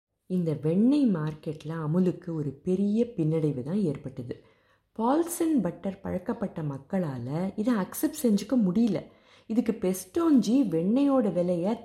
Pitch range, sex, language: 155-230 Hz, female, Tamil